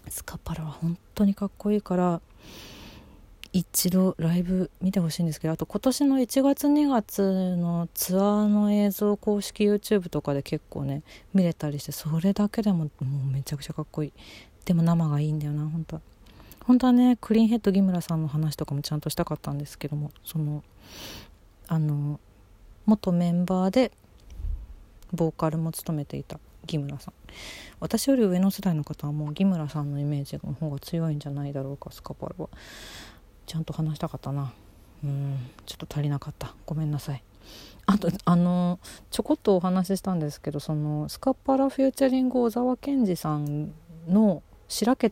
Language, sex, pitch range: Japanese, female, 145-195 Hz